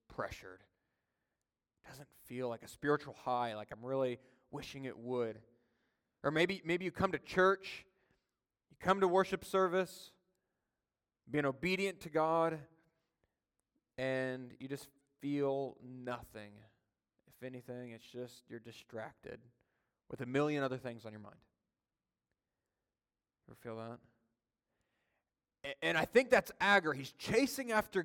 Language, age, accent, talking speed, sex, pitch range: English, 30-49, American, 130 wpm, male, 120-170 Hz